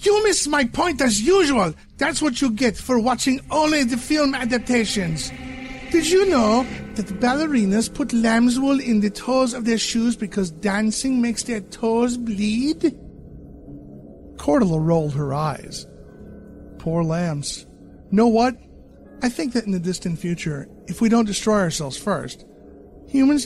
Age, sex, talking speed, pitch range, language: 50-69, male, 145 wpm, 145-235 Hz, English